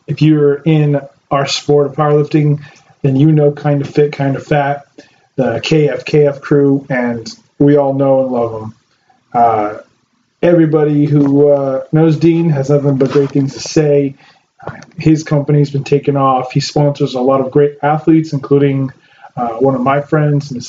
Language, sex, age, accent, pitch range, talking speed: English, male, 30-49, American, 135-155 Hz, 170 wpm